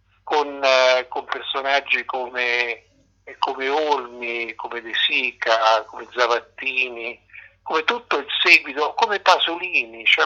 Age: 50-69